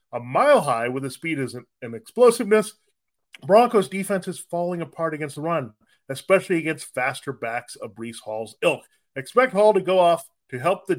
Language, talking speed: English, 185 wpm